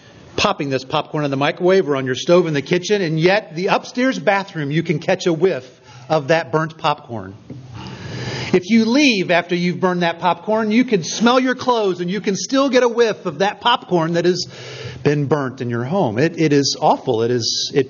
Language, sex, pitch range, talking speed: English, male, 130-175 Hz, 215 wpm